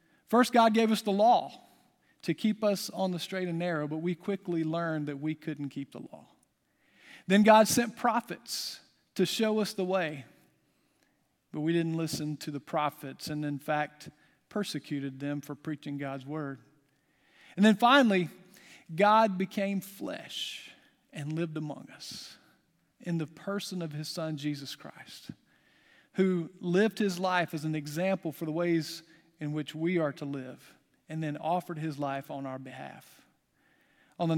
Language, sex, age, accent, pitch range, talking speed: English, male, 40-59, American, 150-185 Hz, 160 wpm